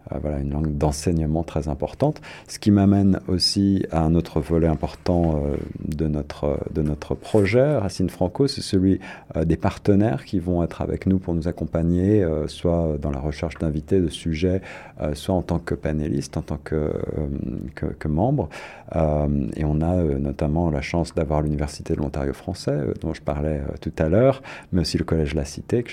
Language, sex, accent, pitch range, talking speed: French, male, French, 75-90 Hz, 180 wpm